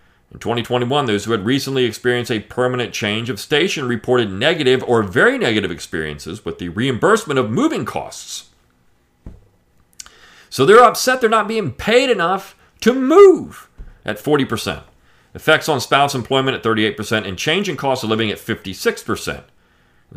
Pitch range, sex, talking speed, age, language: 95-135 Hz, male, 150 wpm, 40-59, English